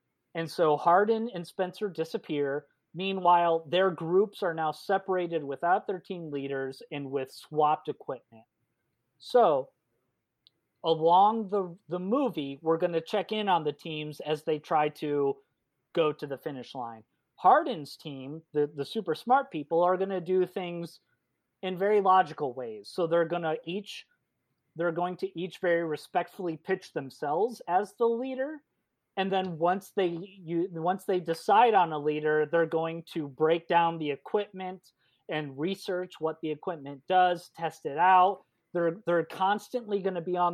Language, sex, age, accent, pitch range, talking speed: English, male, 30-49, American, 150-185 Hz, 160 wpm